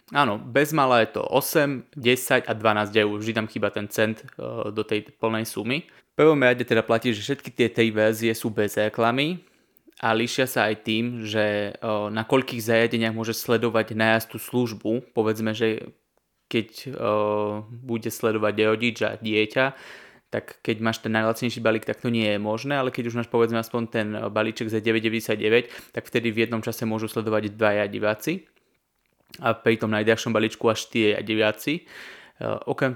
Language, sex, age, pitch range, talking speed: Slovak, male, 20-39, 110-120 Hz, 175 wpm